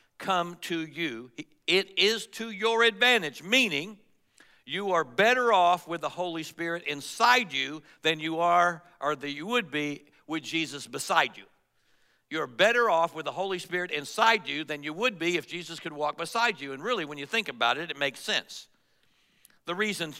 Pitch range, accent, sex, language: 155-210 Hz, American, male, English